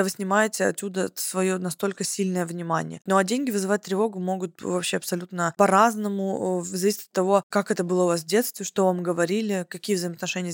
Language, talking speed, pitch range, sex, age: Russian, 180 wpm, 175-200 Hz, female, 20-39